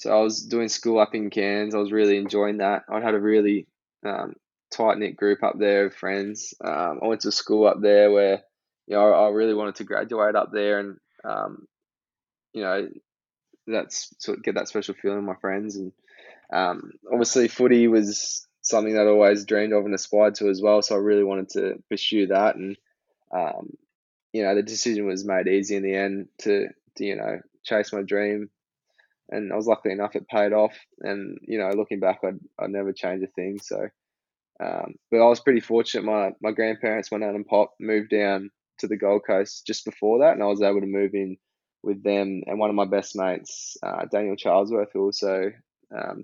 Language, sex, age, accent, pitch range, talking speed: English, male, 10-29, Australian, 100-105 Hz, 210 wpm